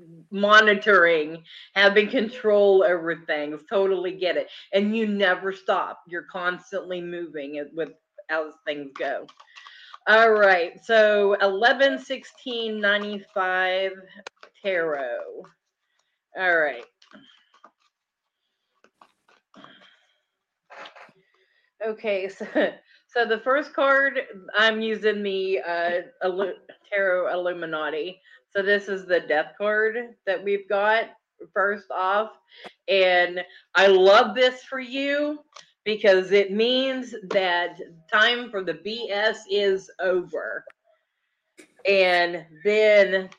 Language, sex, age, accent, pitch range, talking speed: English, female, 30-49, American, 180-225 Hz, 95 wpm